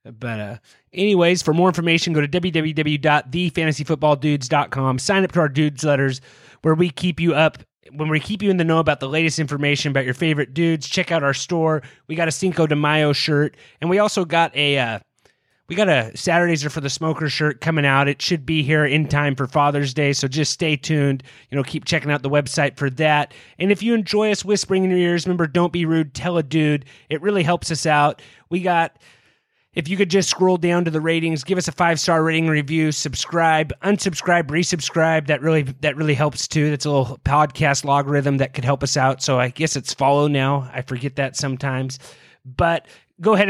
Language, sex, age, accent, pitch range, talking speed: English, male, 30-49, American, 140-170 Hz, 215 wpm